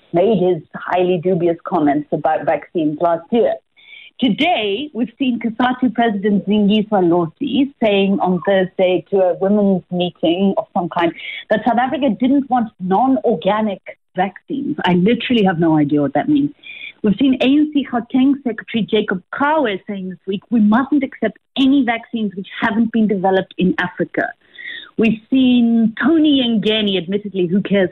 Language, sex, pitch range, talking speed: English, female, 190-260 Hz, 150 wpm